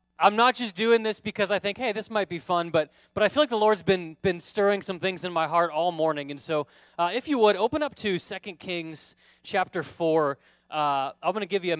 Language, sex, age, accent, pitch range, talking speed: English, male, 30-49, American, 155-200 Hz, 255 wpm